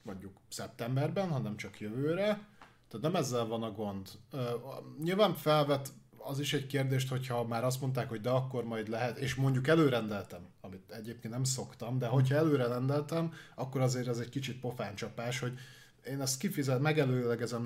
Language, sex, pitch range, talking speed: Hungarian, male, 115-135 Hz, 165 wpm